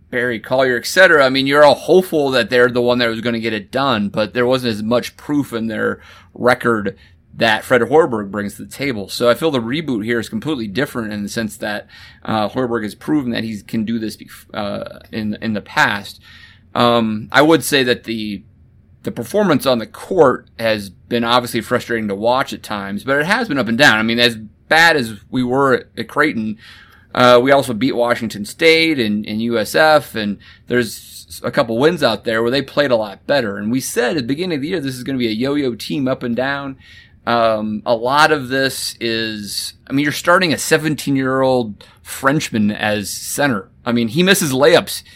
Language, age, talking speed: English, 30-49, 215 wpm